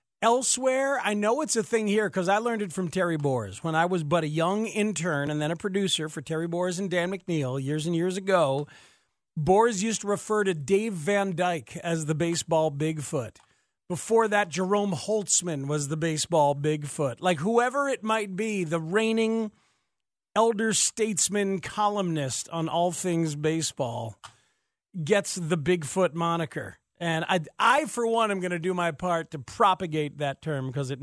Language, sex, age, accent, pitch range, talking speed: English, male, 40-59, American, 155-210 Hz, 175 wpm